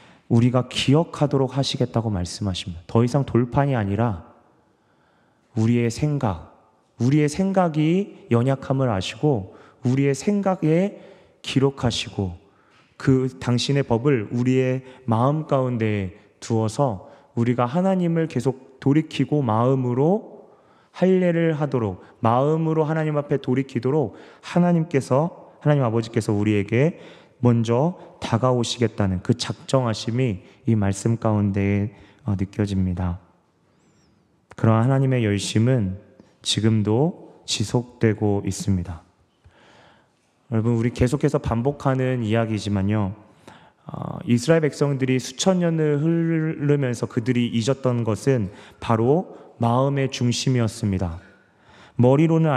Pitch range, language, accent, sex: 110-145 Hz, Korean, native, male